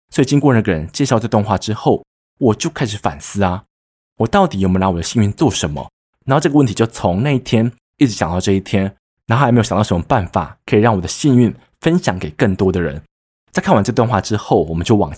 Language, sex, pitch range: Chinese, male, 95-125 Hz